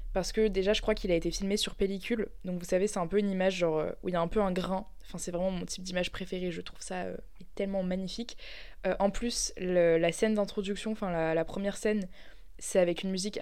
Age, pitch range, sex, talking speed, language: 20-39, 185-215 Hz, female, 255 wpm, French